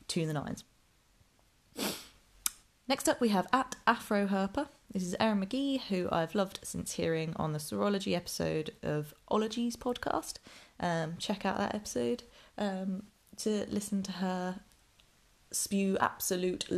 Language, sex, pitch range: English, female, 160-210 Hz